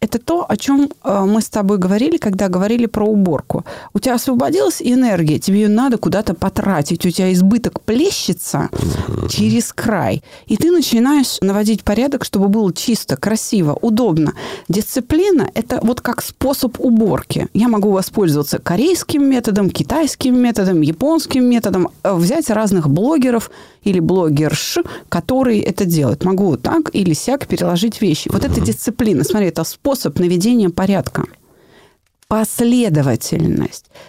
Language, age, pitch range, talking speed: Russian, 30-49, 180-245 Hz, 130 wpm